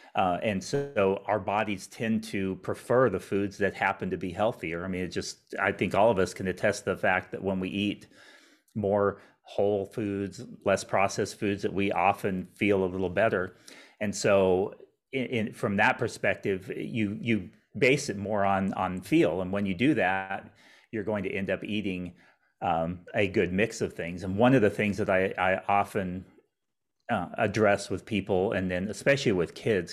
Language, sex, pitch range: English, male, 95-105 Hz